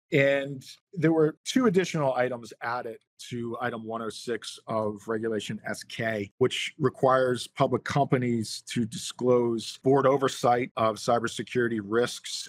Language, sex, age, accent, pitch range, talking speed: English, male, 40-59, American, 115-135 Hz, 115 wpm